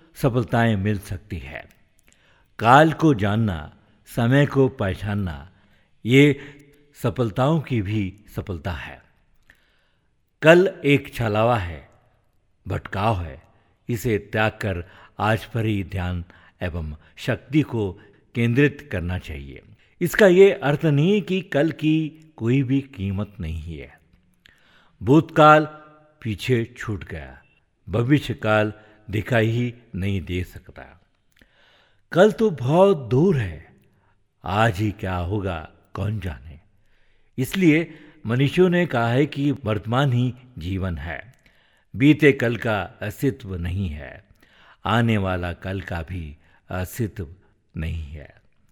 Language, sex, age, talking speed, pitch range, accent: Hindi, male, 60-79, 115 wpm, 95-140 Hz, native